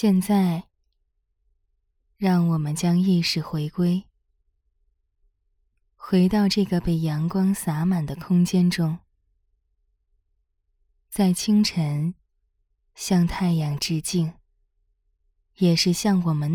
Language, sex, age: Chinese, female, 20-39